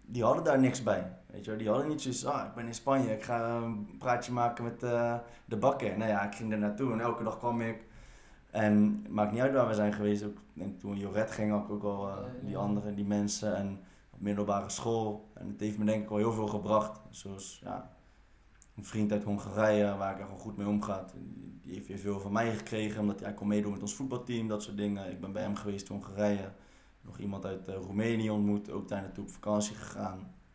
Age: 20-39